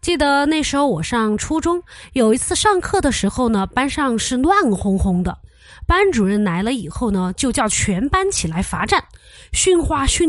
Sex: female